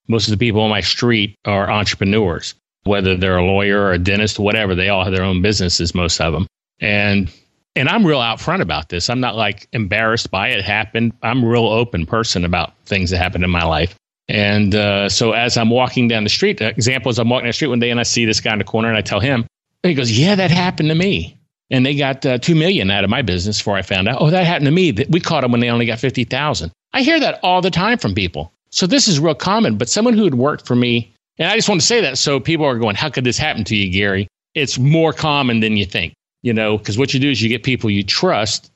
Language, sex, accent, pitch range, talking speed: English, male, American, 105-140 Hz, 270 wpm